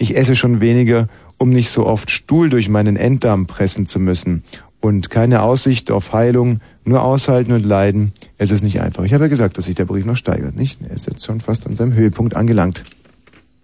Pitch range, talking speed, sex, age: 95-125 Hz, 210 wpm, male, 40-59